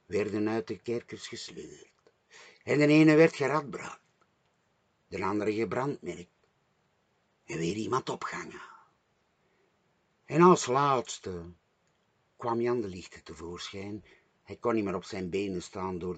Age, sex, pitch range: 60-79, male, 105-155 Hz